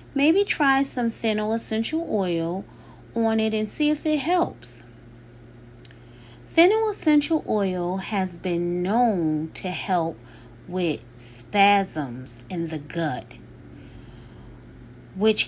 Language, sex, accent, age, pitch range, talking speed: English, female, American, 30-49, 155-240 Hz, 105 wpm